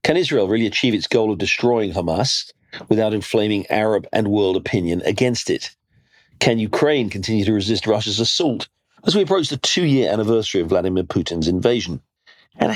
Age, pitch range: 40-59, 100-150 Hz